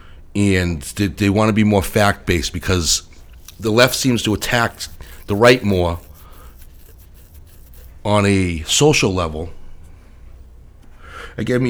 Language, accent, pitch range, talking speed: English, American, 80-100 Hz, 110 wpm